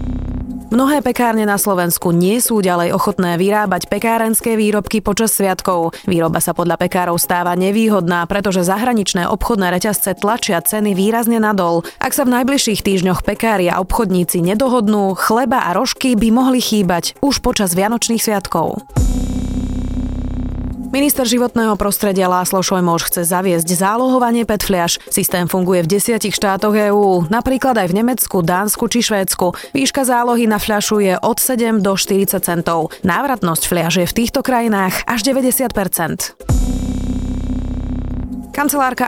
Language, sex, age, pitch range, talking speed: Slovak, female, 20-39, 180-230 Hz, 130 wpm